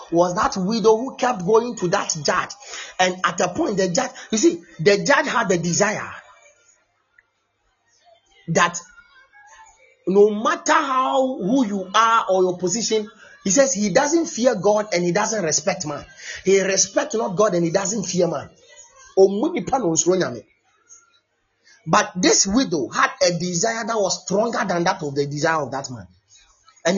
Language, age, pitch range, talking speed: English, 30-49, 175-255 Hz, 155 wpm